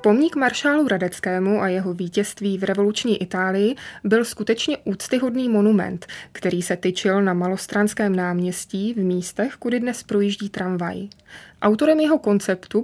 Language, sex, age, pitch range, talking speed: Czech, female, 20-39, 185-220 Hz, 130 wpm